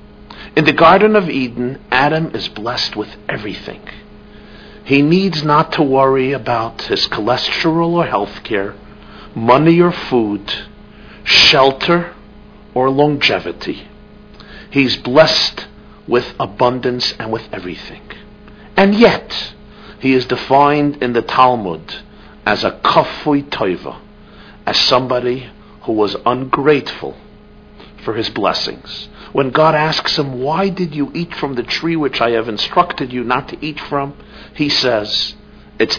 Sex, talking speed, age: male, 130 wpm, 50-69